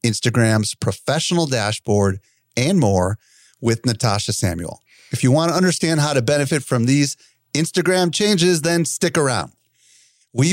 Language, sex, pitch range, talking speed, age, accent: English, male, 115-155 Hz, 135 wpm, 40-59, American